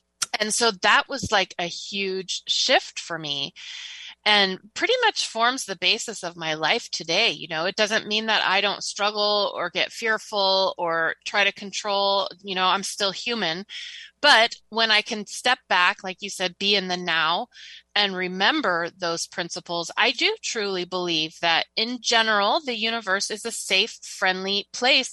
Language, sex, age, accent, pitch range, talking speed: English, female, 30-49, American, 180-220 Hz, 170 wpm